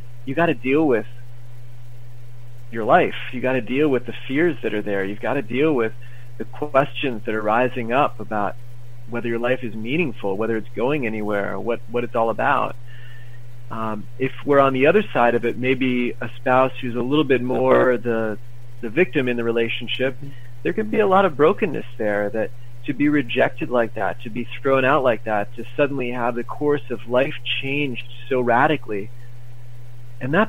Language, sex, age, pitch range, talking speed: English, male, 30-49, 120-130 Hz, 195 wpm